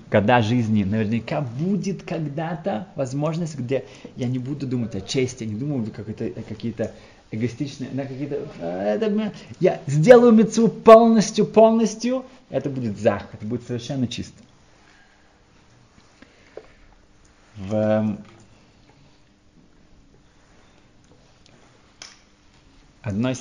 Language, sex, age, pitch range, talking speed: Russian, male, 30-49, 105-150 Hz, 85 wpm